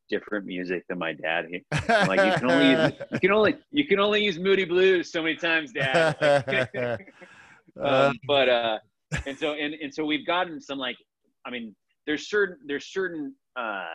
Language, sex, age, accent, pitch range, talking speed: English, male, 30-49, American, 90-150 Hz, 175 wpm